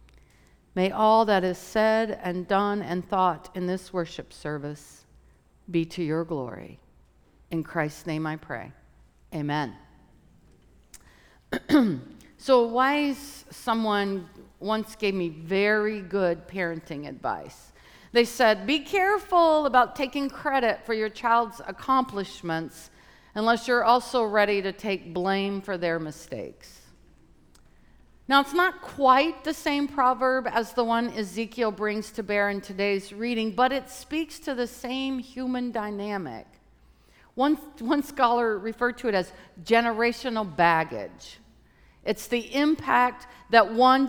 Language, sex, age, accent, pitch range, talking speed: English, female, 50-69, American, 180-250 Hz, 130 wpm